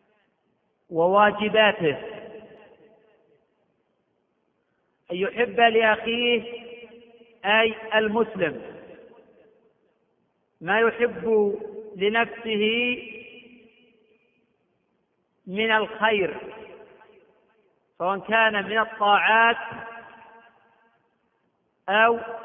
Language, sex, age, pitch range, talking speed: Arabic, male, 50-69, 215-235 Hz, 45 wpm